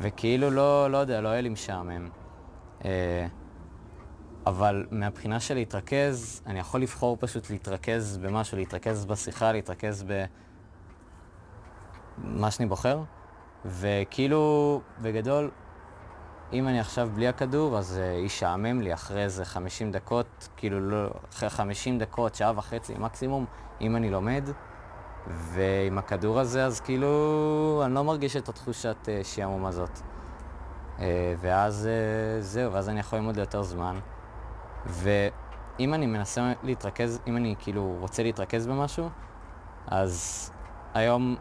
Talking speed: 125 wpm